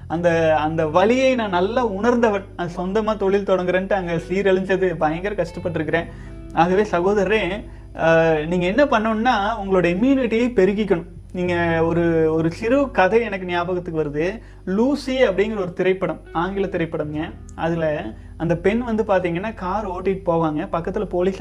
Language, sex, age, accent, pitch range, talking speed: Tamil, male, 30-49, native, 170-220 Hz, 130 wpm